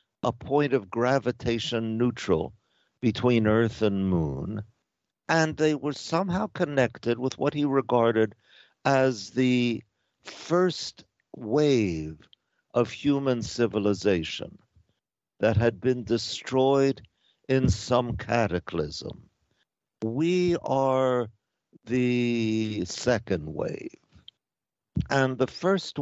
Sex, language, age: male, English, 60-79